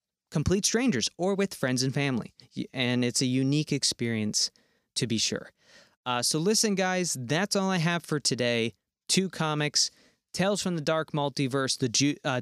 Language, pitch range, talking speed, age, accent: English, 125-155 Hz, 170 wpm, 20-39, American